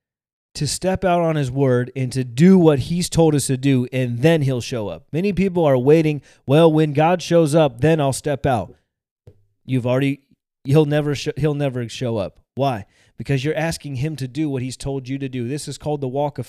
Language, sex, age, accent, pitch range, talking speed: English, male, 30-49, American, 140-185 Hz, 220 wpm